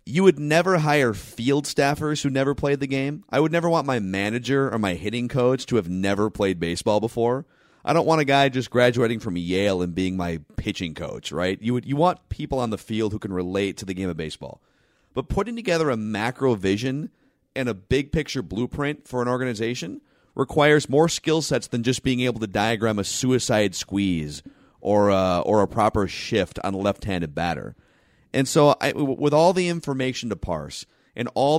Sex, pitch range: male, 100-140 Hz